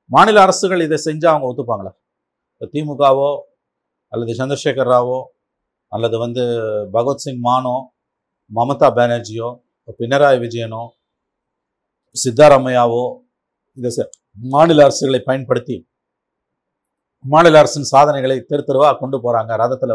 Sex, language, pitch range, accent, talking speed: male, Tamil, 120-155 Hz, native, 95 wpm